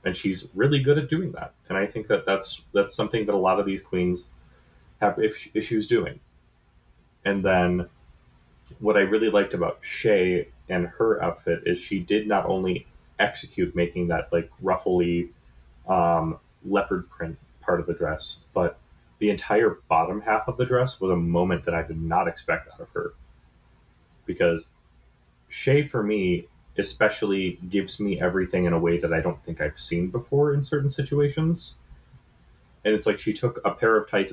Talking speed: 180 wpm